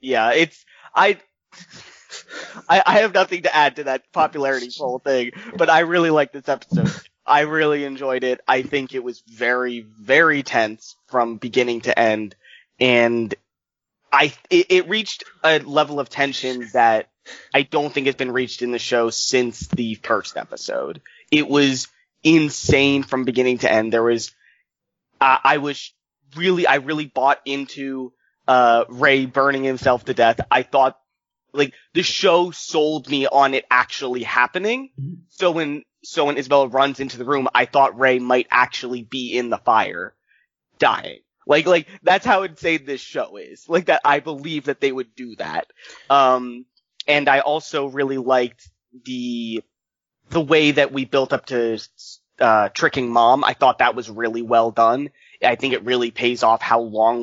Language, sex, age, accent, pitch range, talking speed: English, male, 20-39, American, 125-150 Hz, 170 wpm